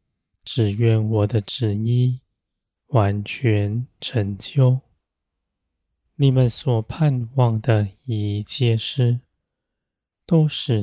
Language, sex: Chinese, male